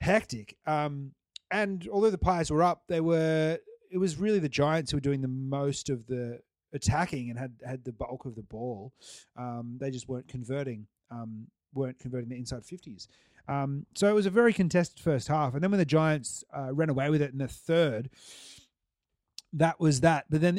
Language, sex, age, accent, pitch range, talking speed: English, male, 30-49, Australian, 130-160 Hz, 200 wpm